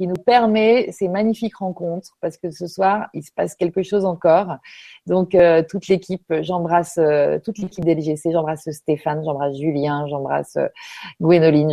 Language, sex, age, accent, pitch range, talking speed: French, female, 30-49, French, 170-215 Hz, 165 wpm